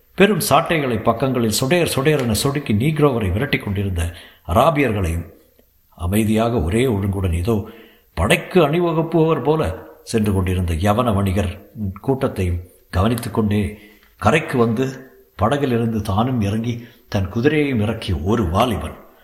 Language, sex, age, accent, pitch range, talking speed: Tamil, male, 60-79, native, 95-130 Hz, 110 wpm